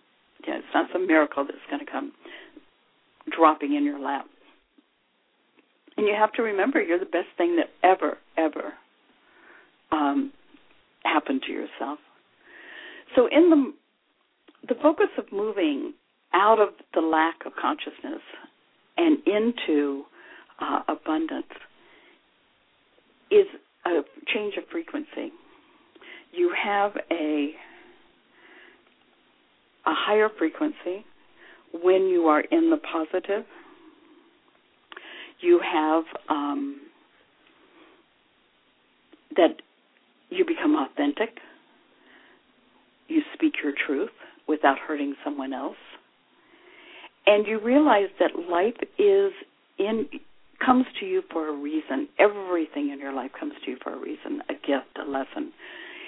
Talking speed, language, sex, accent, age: 110 wpm, English, female, American, 60-79